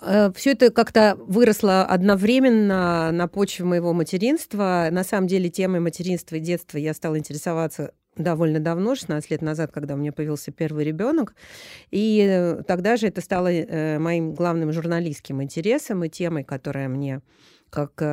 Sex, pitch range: female, 155-200 Hz